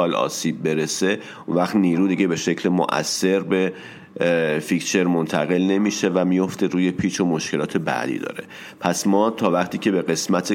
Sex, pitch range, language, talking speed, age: male, 80-100 Hz, Persian, 160 wpm, 40-59